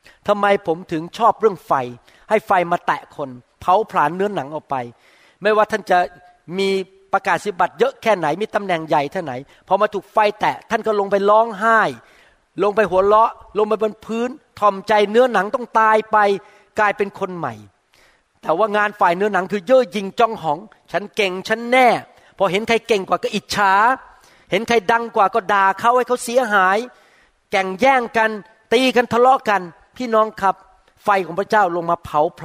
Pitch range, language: 170-220 Hz, Thai